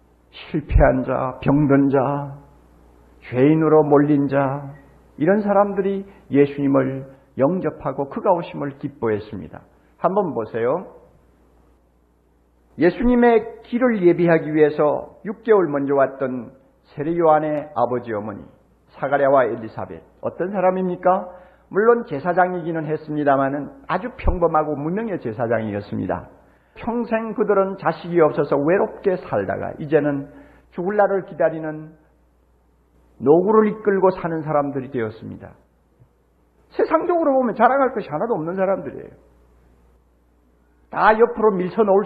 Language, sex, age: Korean, male, 50-69